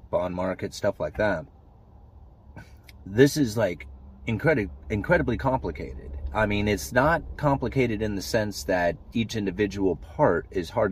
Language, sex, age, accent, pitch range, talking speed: English, male, 30-49, American, 85-105 Hz, 130 wpm